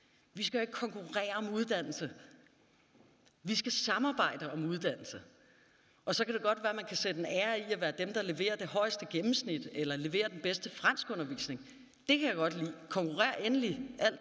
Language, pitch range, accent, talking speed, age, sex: Danish, 160-225 Hz, native, 190 wpm, 40-59, female